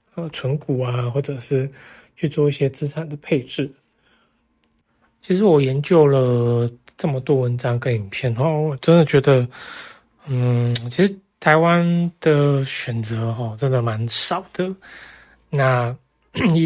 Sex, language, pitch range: male, Chinese, 120-155 Hz